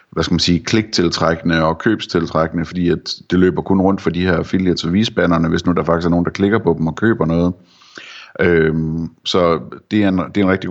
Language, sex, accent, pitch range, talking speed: Danish, male, native, 80-95 Hz, 215 wpm